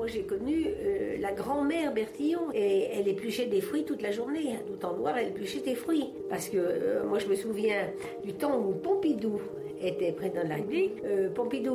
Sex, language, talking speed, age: female, French, 210 wpm, 60-79